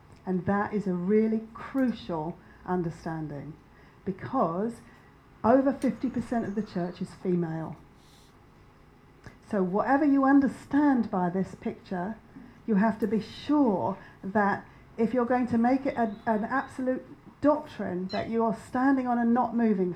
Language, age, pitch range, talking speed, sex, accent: English, 50-69, 175-225 Hz, 135 wpm, female, British